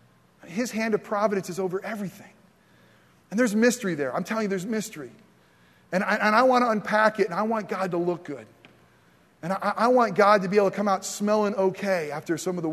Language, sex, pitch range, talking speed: English, male, 155-200 Hz, 215 wpm